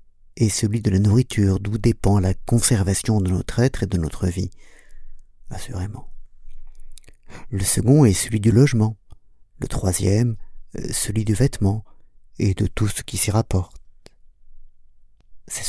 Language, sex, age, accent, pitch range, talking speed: French, male, 50-69, French, 90-115 Hz, 140 wpm